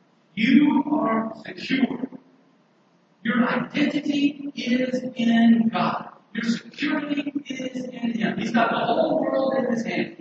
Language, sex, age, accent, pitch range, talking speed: English, male, 50-69, American, 195-260 Hz, 125 wpm